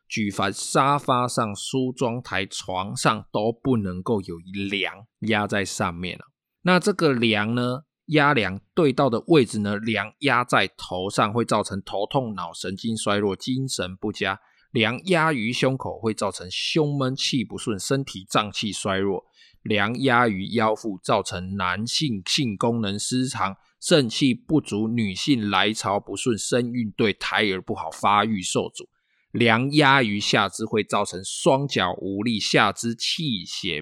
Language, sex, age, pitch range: Chinese, male, 20-39, 100-125 Hz